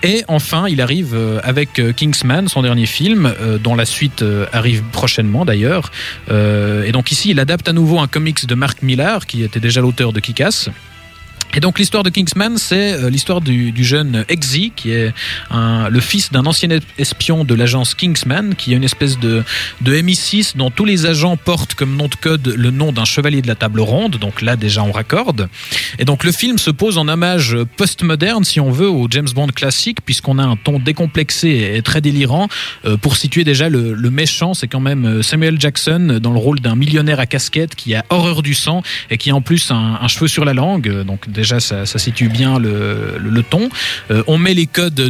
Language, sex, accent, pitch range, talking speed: French, male, French, 120-160 Hz, 210 wpm